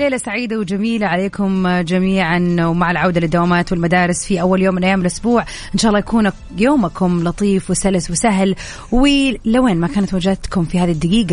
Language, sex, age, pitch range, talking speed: English, female, 30-49, 175-235 Hz, 160 wpm